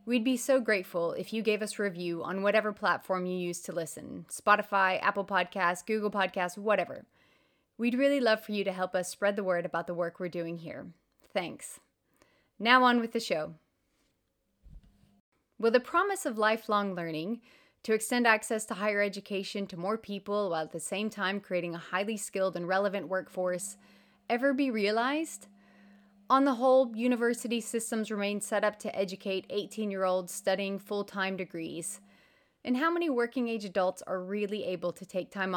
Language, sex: English, female